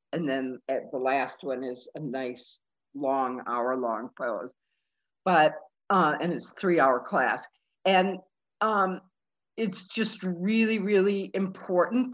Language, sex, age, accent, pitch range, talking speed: English, female, 60-79, American, 165-195 Hz, 125 wpm